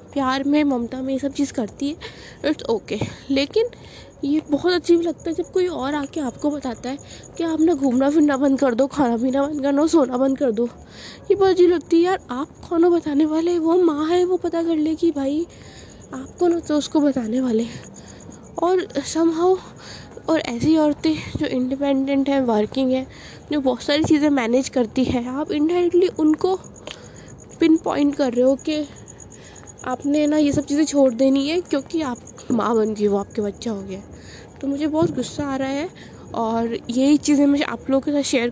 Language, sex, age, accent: Hindi, female, 20-39, native